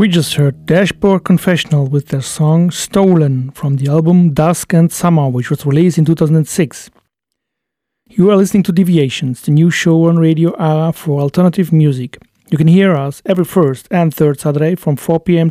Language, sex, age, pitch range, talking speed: German, male, 40-59, 140-175 Hz, 175 wpm